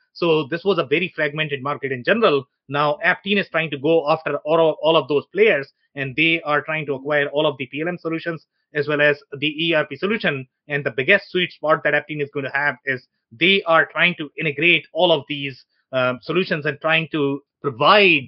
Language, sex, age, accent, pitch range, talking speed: English, male, 30-49, Indian, 140-180 Hz, 210 wpm